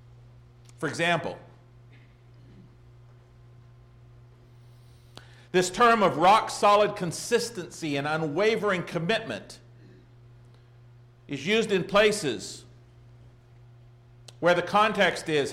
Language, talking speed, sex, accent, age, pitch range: English, 70 wpm, male, American, 50-69, 120-180 Hz